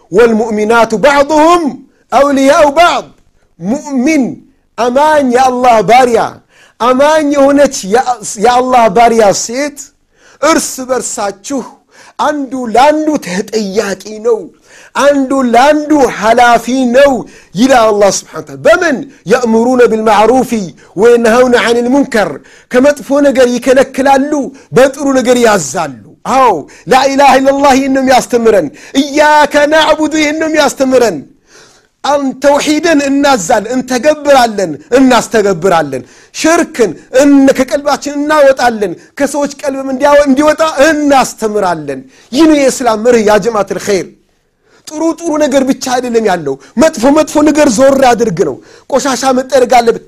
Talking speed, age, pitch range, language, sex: 105 wpm, 50-69, 230-285 Hz, Amharic, male